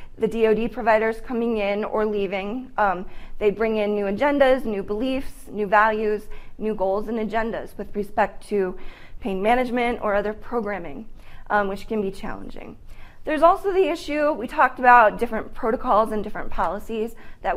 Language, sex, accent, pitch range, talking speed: English, female, American, 205-245 Hz, 160 wpm